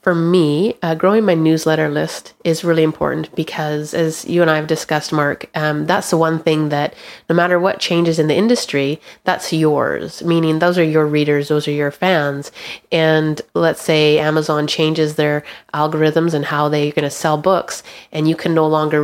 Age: 30-49